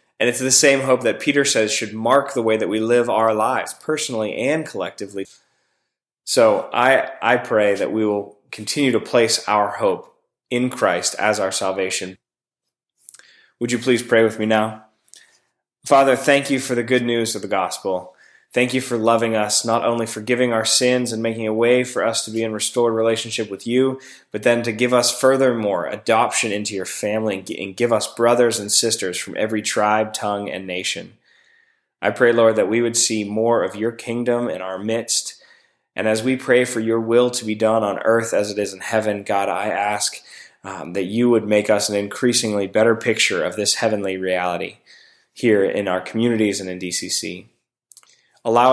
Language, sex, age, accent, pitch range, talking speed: English, male, 20-39, American, 105-120 Hz, 190 wpm